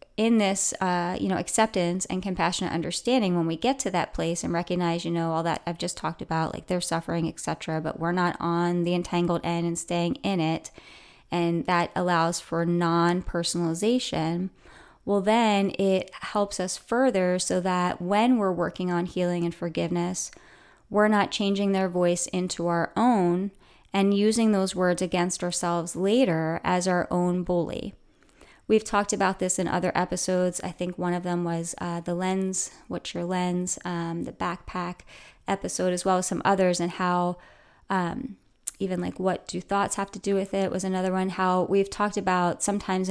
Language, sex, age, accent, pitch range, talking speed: English, female, 20-39, American, 175-195 Hz, 180 wpm